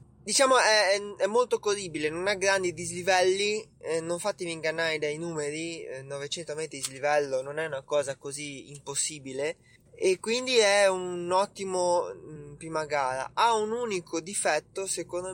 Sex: male